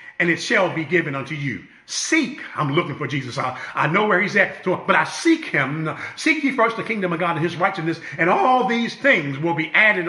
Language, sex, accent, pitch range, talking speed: English, male, American, 165-230 Hz, 230 wpm